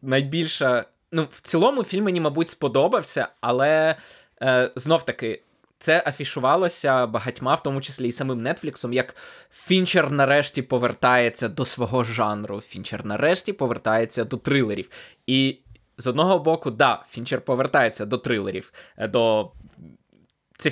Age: 20-39